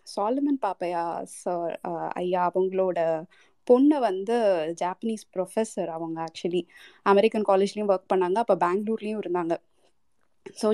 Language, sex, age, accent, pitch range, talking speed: Tamil, female, 20-39, native, 180-215 Hz, 105 wpm